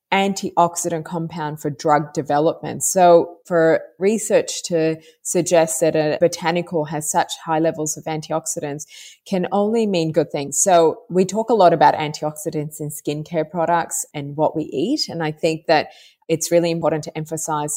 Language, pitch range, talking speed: English, 150-180 Hz, 160 wpm